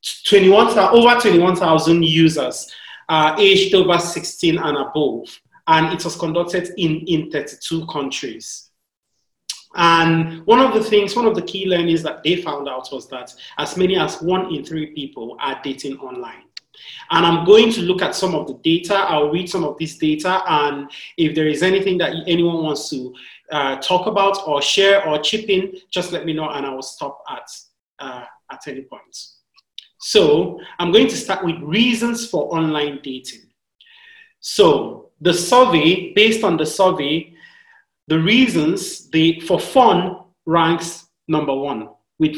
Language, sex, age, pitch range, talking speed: English, male, 30-49, 155-195 Hz, 165 wpm